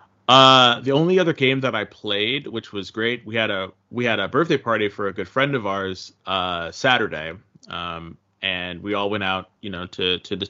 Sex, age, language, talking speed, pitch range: male, 20-39, English, 215 wpm, 95-120 Hz